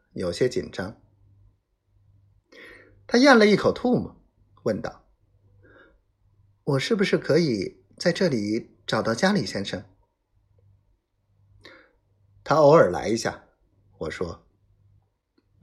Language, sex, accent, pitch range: Chinese, male, native, 100-125 Hz